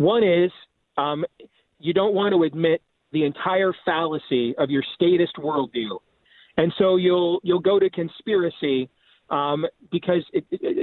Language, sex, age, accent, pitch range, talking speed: English, male, 40-59, American, 160-200 Hz, 145 wpm